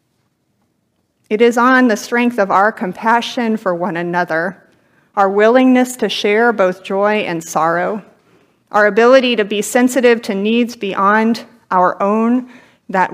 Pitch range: 190-240 Hz